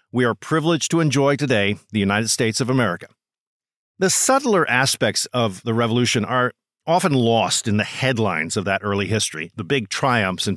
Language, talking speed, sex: English, 175 wpm, male